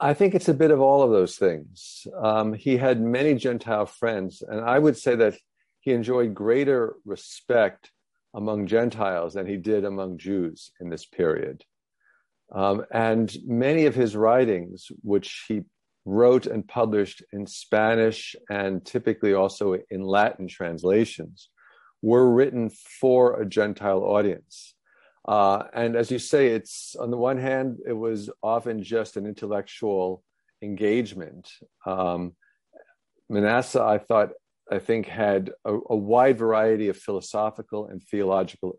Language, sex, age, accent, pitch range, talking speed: English, male, 50-69, American, 95-115 Hz, 140 wpm